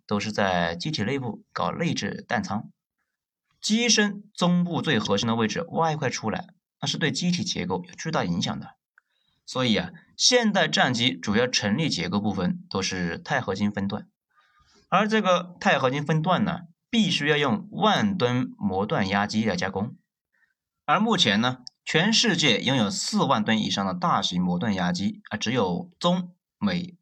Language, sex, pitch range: Chinese, male, 130-200 Hz